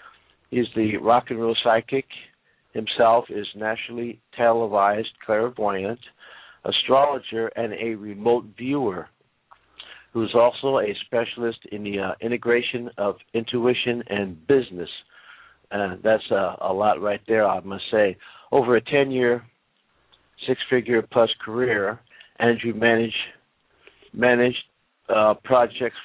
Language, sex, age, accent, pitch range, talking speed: English, male, 50-69, American, 105-125 Hz, 115 wpm